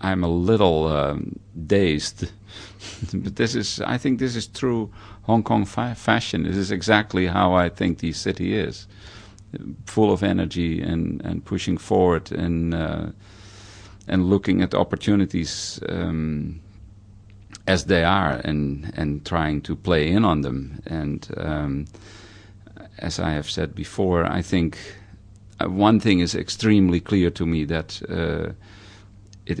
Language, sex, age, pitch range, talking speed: English, male, 50-69, 80-100 Hz, 140 wpm